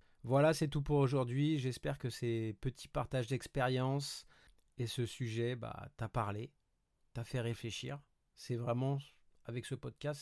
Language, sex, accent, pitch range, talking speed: French, male, French, 115-135 Hz, 145 wpm